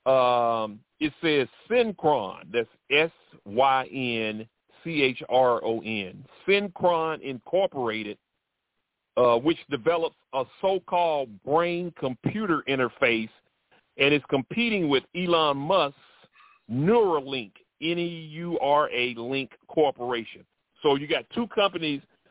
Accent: American